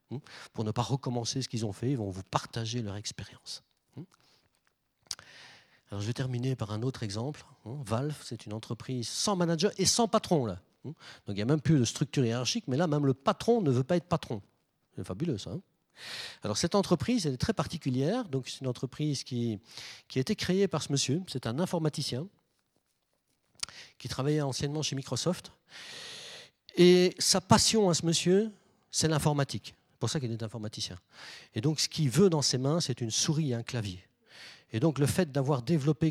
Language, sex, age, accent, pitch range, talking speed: French, male, 40-59, French, 115-160 Hz, 190 wpm